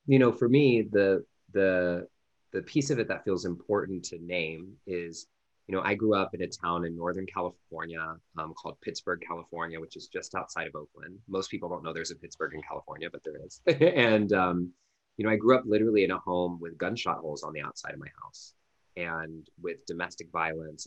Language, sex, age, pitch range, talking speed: English, male, 30-49, 85-100 Hz, 210 wpm